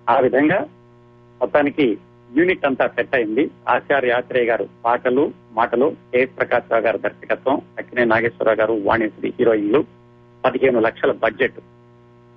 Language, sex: Telugu, male